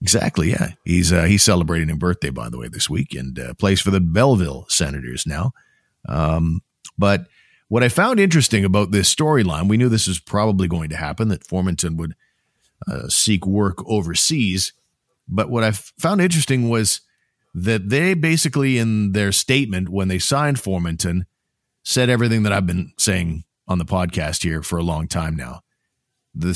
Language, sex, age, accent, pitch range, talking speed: English, male, 50-69, American, 90-115 Hz, 175 wpm